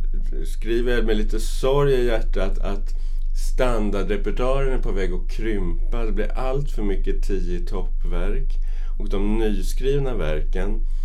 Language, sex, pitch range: Swedish, male, 80-110 Hz